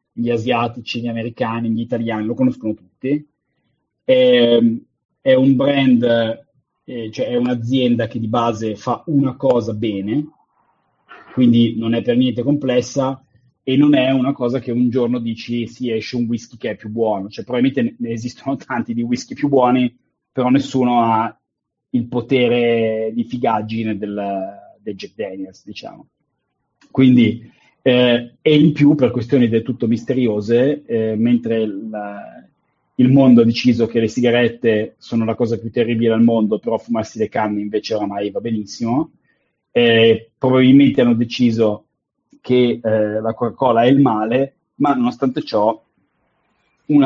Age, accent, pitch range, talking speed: 30-49, native, 115-130 Hz, 150 wpm